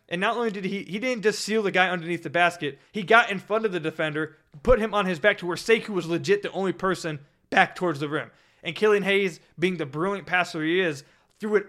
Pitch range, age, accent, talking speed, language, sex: 170-210 Hz, 20-39, American, 250 wpm, English, male